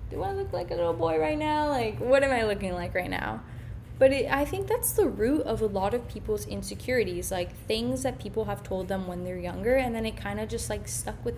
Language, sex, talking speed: English, female, 255 wpm